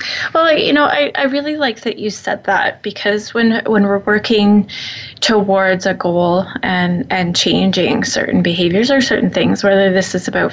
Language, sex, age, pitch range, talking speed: English, female, 20-39, 185-215 Hz, 175 wpm